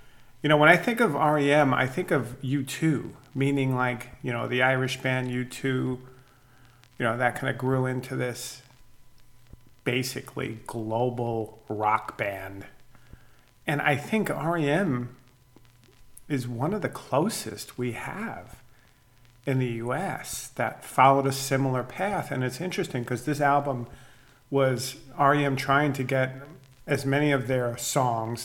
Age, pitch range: 40-59, 120-140 Hz